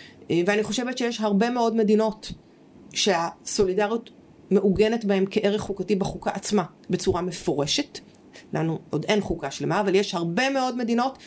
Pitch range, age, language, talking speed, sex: 185-230 Hz, 30-49, Hebrew, 135 wpm, female